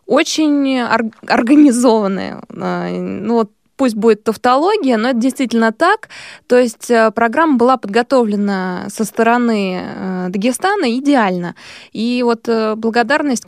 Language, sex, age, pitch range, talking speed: Russian, female, 20-39, 205-255 Hz, 100 wpm